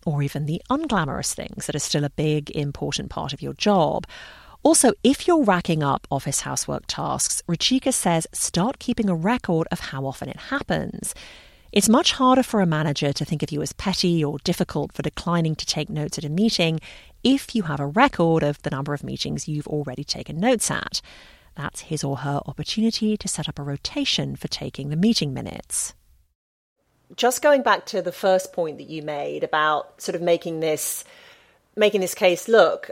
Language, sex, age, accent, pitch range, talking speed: English, female, 40-59, British, 150-220 Hz, 190 wpm